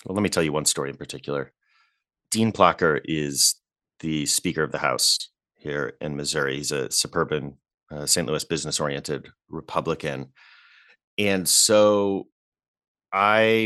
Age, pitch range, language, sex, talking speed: 30-49, 80-105 Hz, English, male, 135 wpm